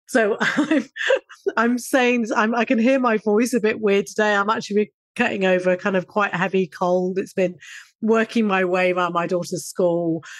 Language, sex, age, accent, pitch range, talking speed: English, female, 30-49, British, 180-215 Hz, 185 wpm